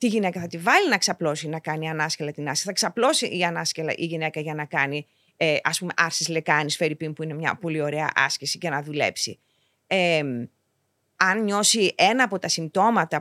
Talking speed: 180 wpm